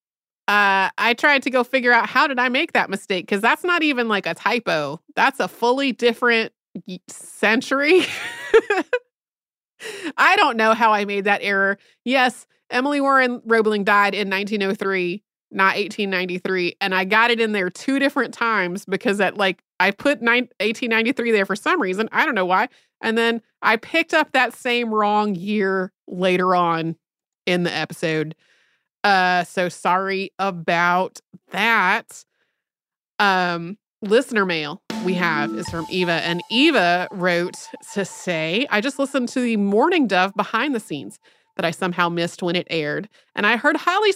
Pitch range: 185-255 Hz